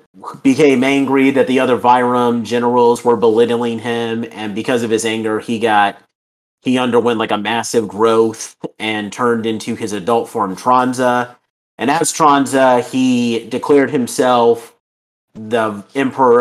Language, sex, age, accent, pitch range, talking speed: English, male, 30-49, American, 110-130 Hz, 140 wpm